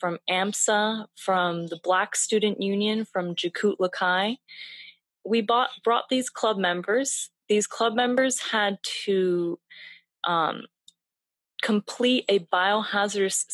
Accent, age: American, 20-39